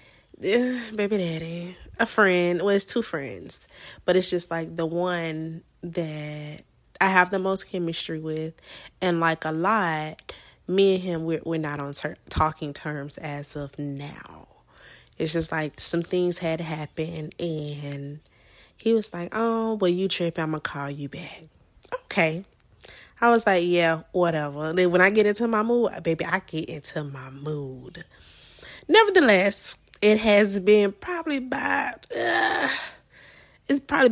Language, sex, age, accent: English, female, 20-39, American